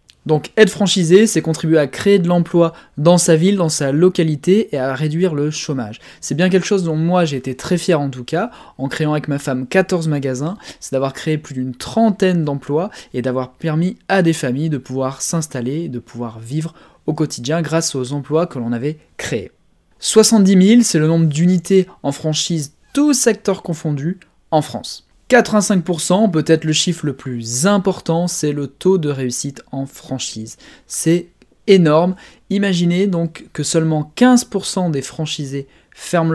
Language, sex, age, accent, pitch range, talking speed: French, male, 20-39, French, 145-180 Hz, 170 wpm